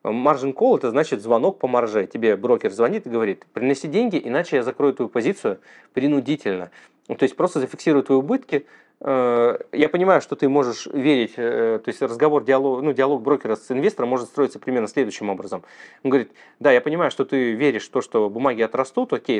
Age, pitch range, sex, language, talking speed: 30-49, 130-185 Hz, male, Russian, 180 wpm